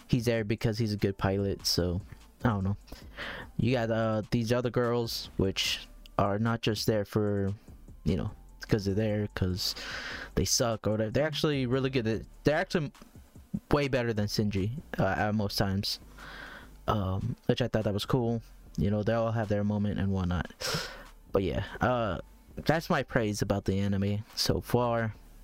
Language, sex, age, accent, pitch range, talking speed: English, male, 20-39, American, 105-125 Hz, 175 wpm